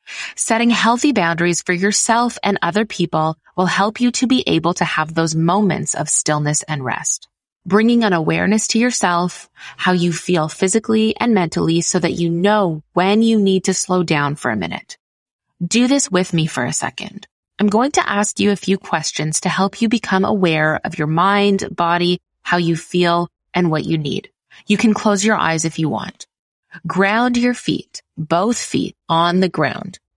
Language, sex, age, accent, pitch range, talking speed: English, female, 20-39, American, 170-220 Hz, 185 wpm